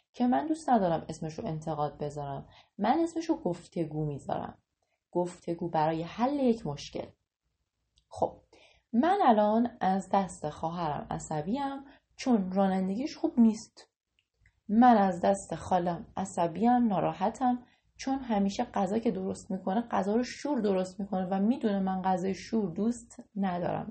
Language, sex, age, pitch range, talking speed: Persian, female, 30-49, 160-230 Hz, 135 wpm